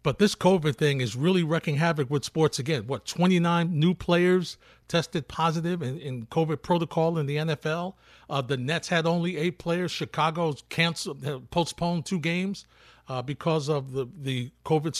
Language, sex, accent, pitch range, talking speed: English, male, American, 130-170 Hz, 170 wpm